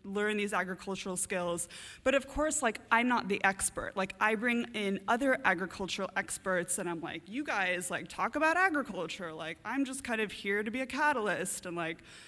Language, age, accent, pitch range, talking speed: English, 20-39, American, 180-230 Hz, 195 wpm